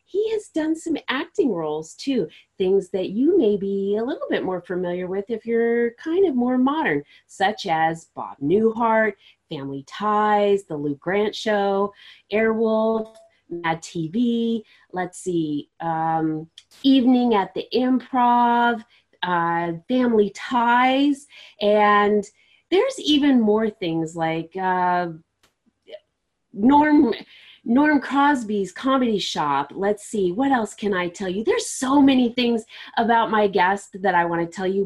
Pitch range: 180-255 Hz